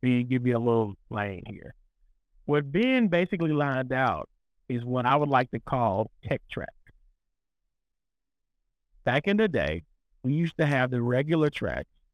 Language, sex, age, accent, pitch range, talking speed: English, male, 50-69, American, 115-150 Hz, 155 wpm